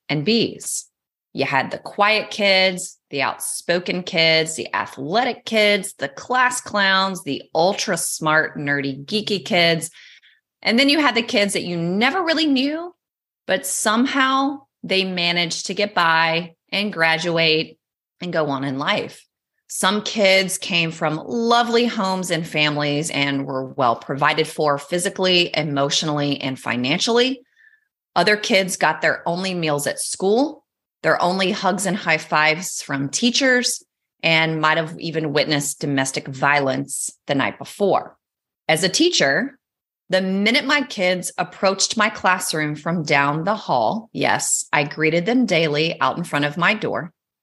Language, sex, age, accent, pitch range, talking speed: English, female, 30-49, American, 155-210 Hz, 145 wpm